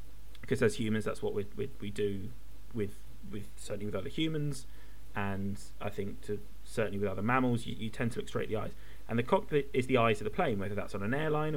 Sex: male